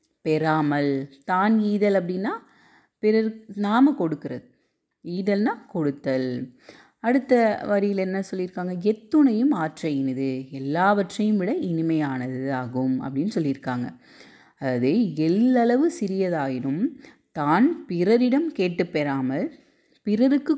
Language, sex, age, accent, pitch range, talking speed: Tamil, female, 30-49, native, 155-225 Hz, 85 wpm